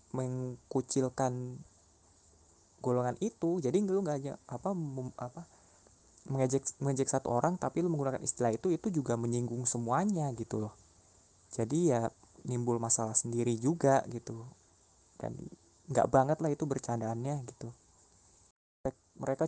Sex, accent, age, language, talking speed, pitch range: male, native, 20-39, Indonesian, 120 wpm, 120-145 Hz